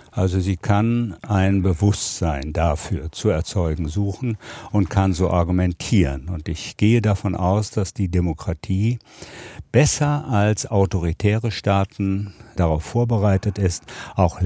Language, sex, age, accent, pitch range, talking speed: German, male, 60-79, German, 90-115 Hz, 120 wpm